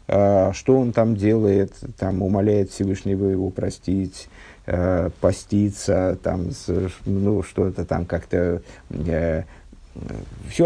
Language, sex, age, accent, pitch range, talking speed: Russian, male, 50-69, native, 90-115 Hz, 95 wpm